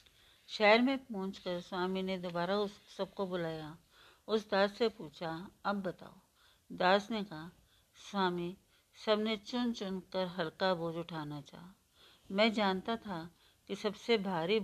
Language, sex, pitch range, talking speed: Hindi, female, 175-215 Hz, 145 wpm